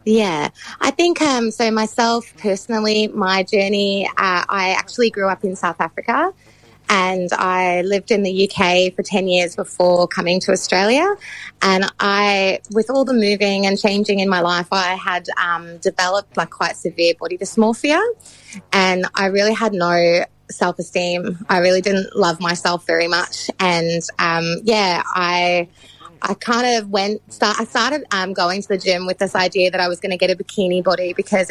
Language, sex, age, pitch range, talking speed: English, female, 20-39, 175-205 Hz, 175 wpm